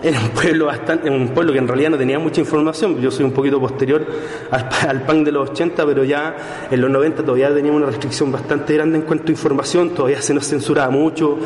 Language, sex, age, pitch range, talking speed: Spanish, male, 30-49, 145-180 Hz, 230 wpm